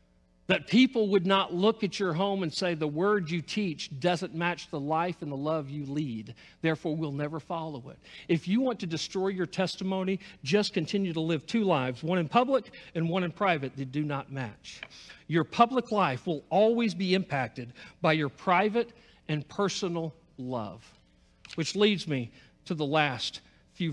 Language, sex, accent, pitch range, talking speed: English, male, American, 160-235 Hz, 180 wpm